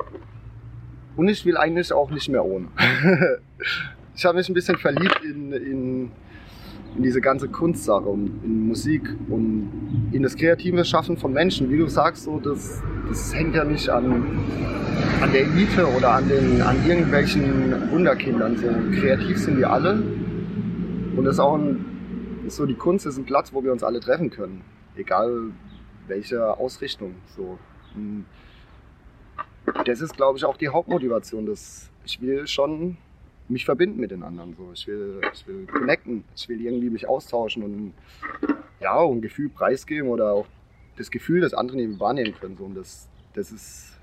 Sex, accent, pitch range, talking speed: male, German, 105-155 Hz, 150 wpm